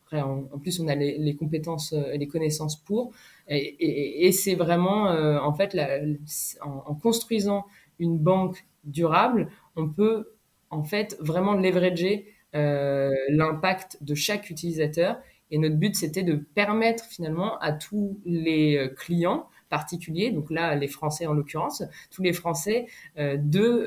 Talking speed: 150 wpm